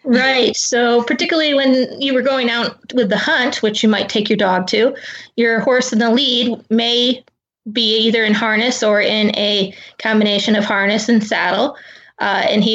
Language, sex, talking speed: English, female, 185 wpm